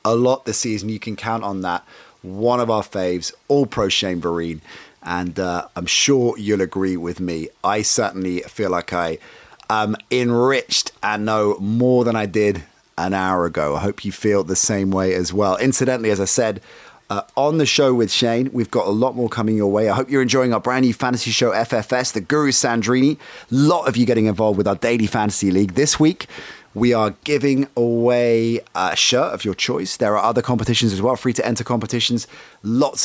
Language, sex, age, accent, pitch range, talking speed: English, male, 30-49, British, 100-125 Hz, 205 wpm